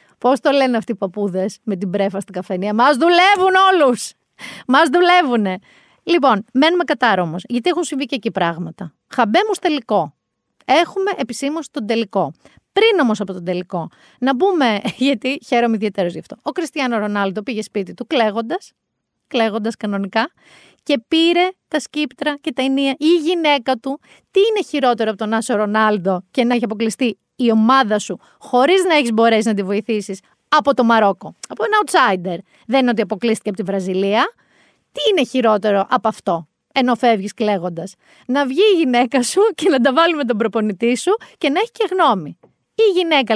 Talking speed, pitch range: 170 wpm, 205-300 Hz